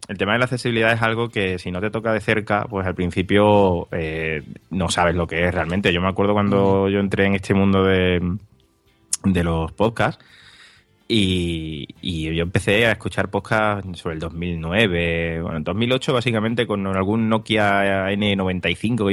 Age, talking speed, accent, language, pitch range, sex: 20-39, 175 wpm, Spanish, Spanish, 90-115 Hz, male